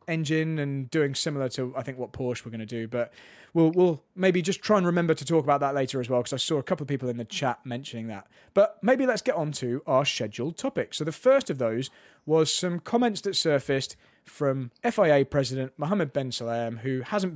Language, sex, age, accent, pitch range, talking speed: English, male, 30-49, British, 135-185 Hz, 230 wpm